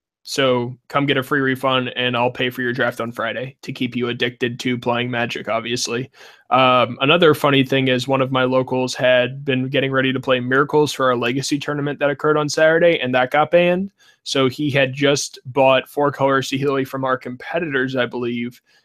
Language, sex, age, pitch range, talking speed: English, male, 20-39, 125-135 Hz, 200 wpm